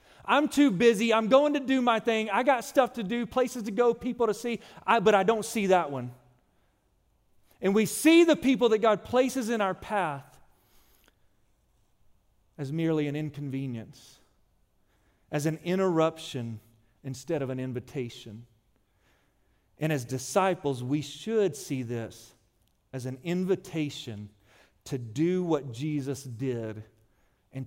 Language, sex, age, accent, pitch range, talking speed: English, male, 40-59, American, 130-185 Hz, 140 wpm